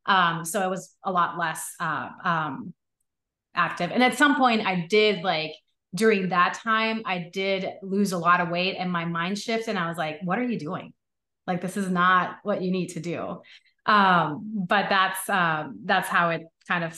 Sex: female